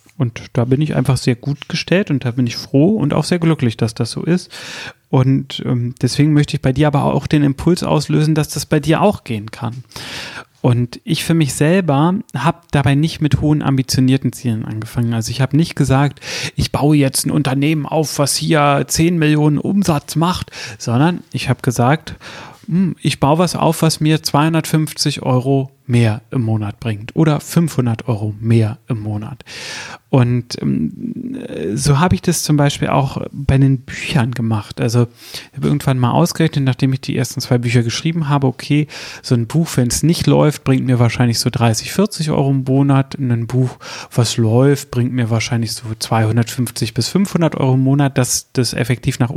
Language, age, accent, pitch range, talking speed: German, 30-49, German, 120-155 Hz, 185 wpm